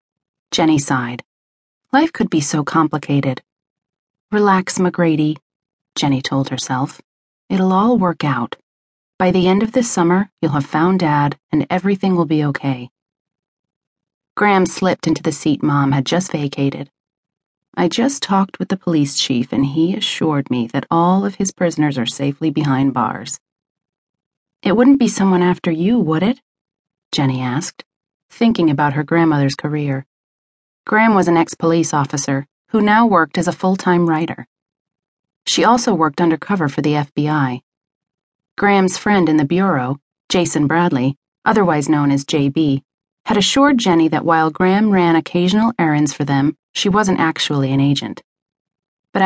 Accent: American